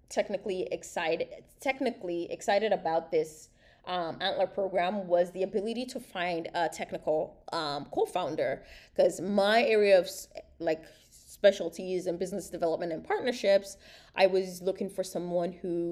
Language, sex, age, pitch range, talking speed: English, female, 20-39, 175-215 Hz, 130 wpm